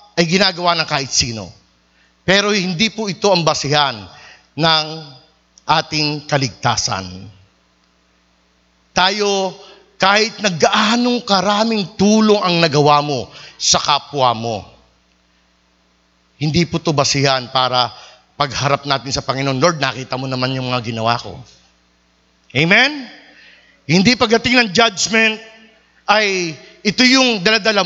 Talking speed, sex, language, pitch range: 110 wpm, male, Filipino, 130-205 Hz